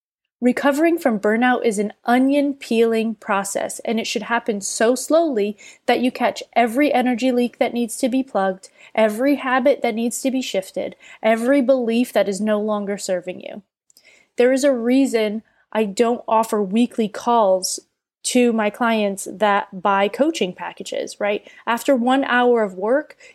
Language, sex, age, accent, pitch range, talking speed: English, female, 20-39, American, 220-270 Hz, 155 wpm